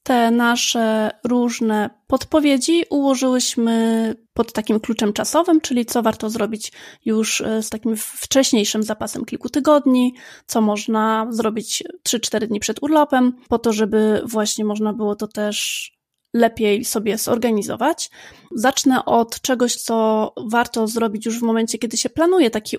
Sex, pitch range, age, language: female, 220-255 Hz, 20-39, Polish